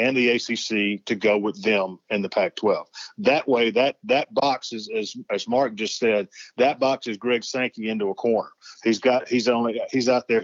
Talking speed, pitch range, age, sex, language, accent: 215 wpm, 115-160 Hz, 40-59, male, English, American